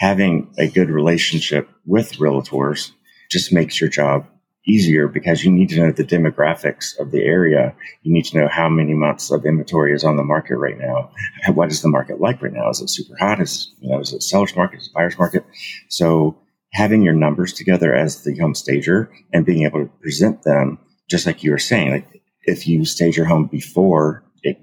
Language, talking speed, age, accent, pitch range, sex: English, 210 wpm, 30-49, American, 75-90 Hz, male